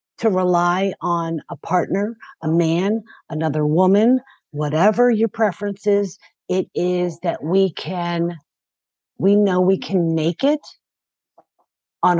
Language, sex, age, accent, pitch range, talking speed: English, female, 50-69, American, 165-210 Hz, 125 wpm